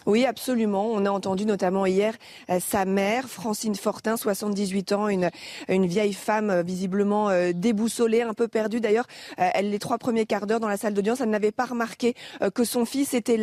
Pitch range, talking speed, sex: 205-240 Hz, 205 wpm, female